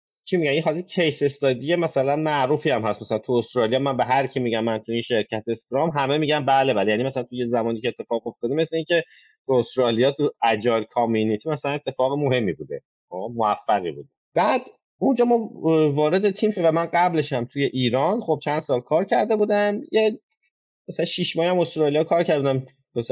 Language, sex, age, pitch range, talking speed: Persian, male, 30-49, 125-175 Hz, 180 wpm